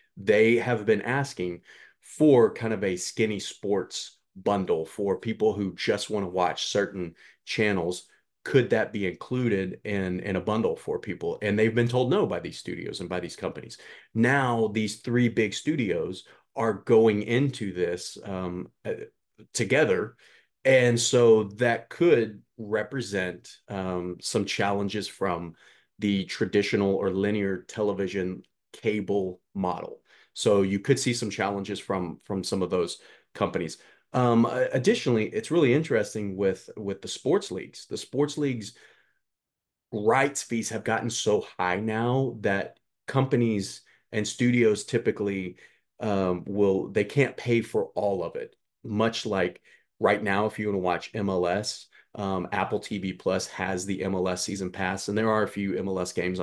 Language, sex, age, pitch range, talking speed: English, male, 30-49, 95-120 Hz, 150 wpm